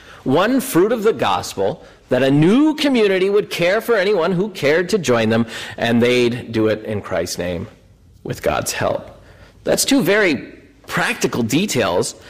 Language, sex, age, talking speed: English, male, 50-69, 160 wpm